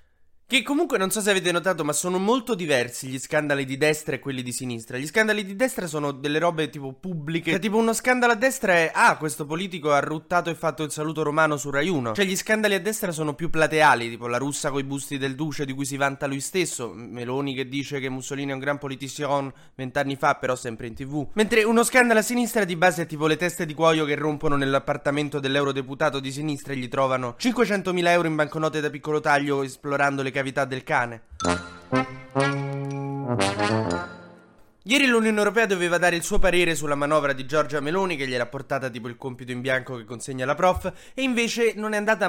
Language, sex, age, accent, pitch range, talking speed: Italian, male, 20-39, native, 135-180 Hz, 210 wpm